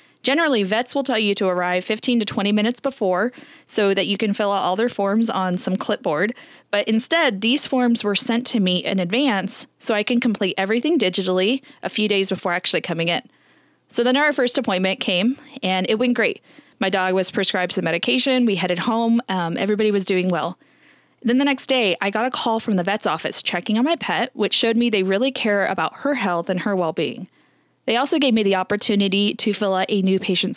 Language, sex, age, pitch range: English, female, 20-39, 190-245 Hz